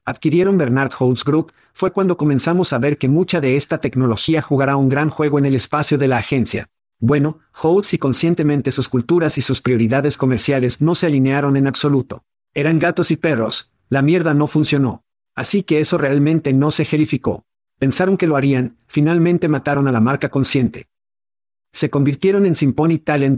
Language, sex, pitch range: Spanish, male, 135-160 Hz